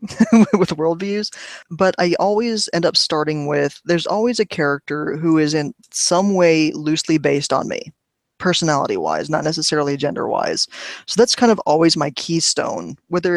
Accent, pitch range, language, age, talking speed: American, 145-175 Hz, English, 20-39, 155 wpm